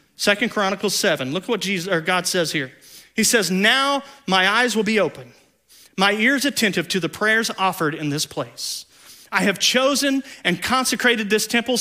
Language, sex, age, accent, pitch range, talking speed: English, male, 40-59, American, 180-240 Hz, 180 wpm